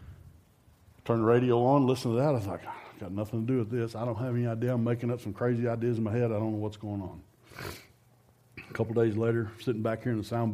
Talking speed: 275 wpm